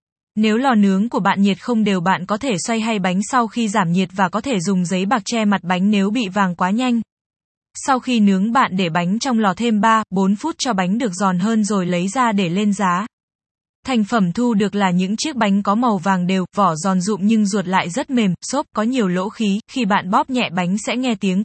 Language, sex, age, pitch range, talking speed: Vietnamese, female, 10-29, 195-230 Hz, 245 wpm